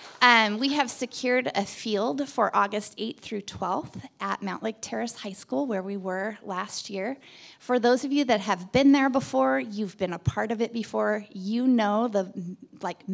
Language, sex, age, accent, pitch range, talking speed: English, female, 20-39, American, 185-235 Hz, 190 wpm